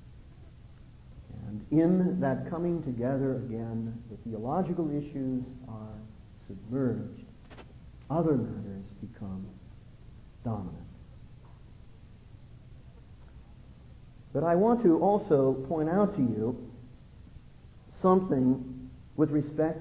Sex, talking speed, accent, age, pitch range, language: male, 80 wpm, American, 50-69, 120-175 Hz, English